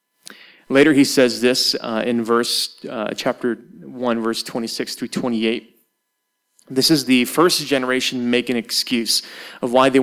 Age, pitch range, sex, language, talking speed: 30-49, 115-145 Hz, male, English, 150 wpm